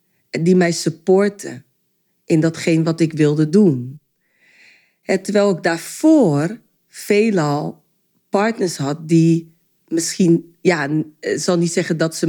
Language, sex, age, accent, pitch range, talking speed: Dutch, female, 40-59, Dutch, 155-215 Hz, 115 wpm